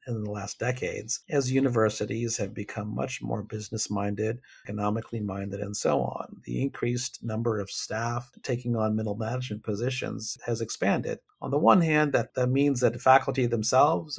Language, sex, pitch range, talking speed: English, male, 105-135 Hz, 155 wpm